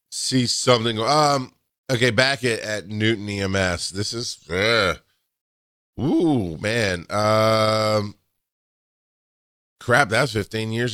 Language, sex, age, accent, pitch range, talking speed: English, male, 30-49, American, 95-115 Hz, 105 wpm